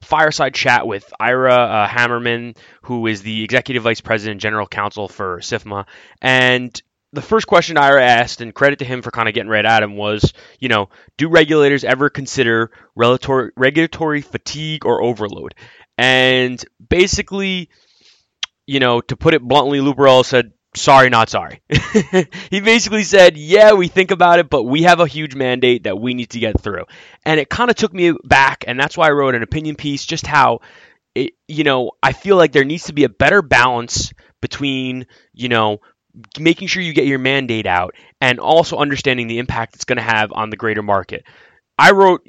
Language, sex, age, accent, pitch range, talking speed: English, male, 20-39, American, 115-155 Hz, 185 wpm